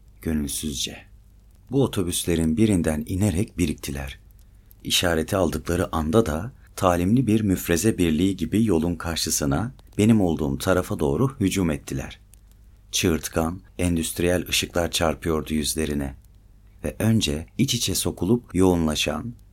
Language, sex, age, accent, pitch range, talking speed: Turkish, male, 40-59, native, 80-100 Hz, 105 wpm